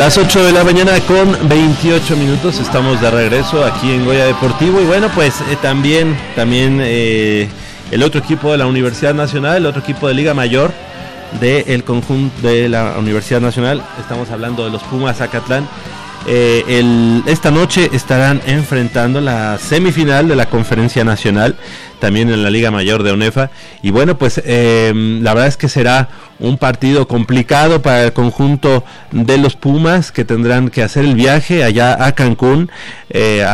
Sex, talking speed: male, 165 wpm